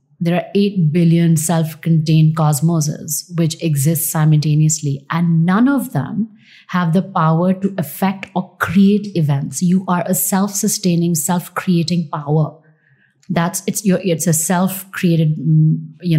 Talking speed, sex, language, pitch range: 125 wpm, female, English, 155-190 Hz